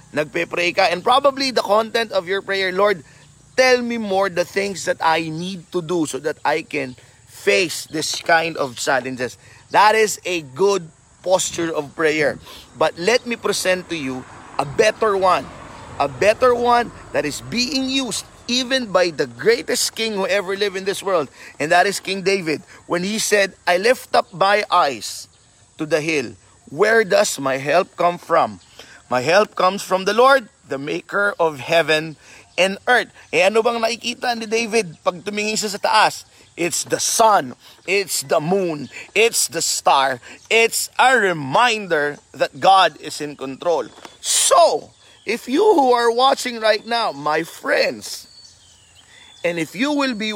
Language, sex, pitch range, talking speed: Filipino, male, 155-220 Hz, 165 wpm